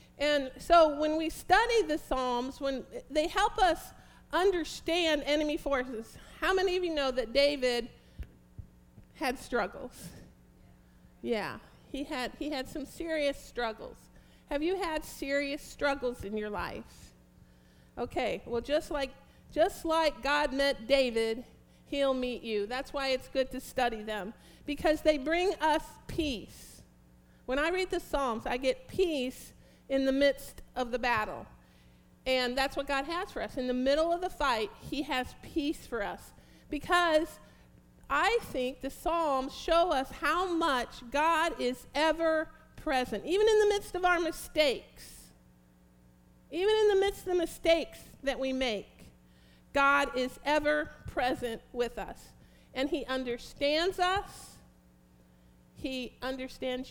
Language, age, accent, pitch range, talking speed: English, 50-69, American, 235-315 Hz, 145 wpm